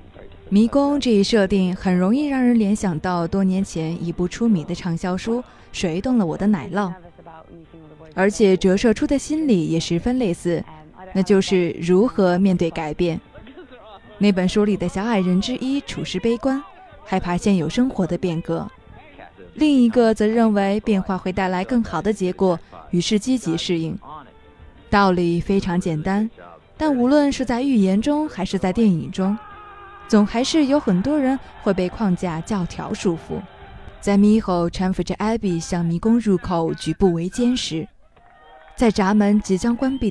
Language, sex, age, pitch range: Chinese, female, 20-39, 175-225 Hz